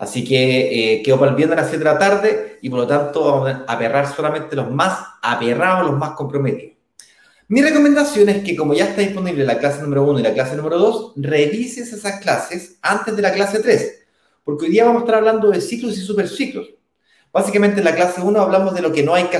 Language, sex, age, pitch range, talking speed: Spanish, male, 30-49, 140-200 Hz, 225 wpm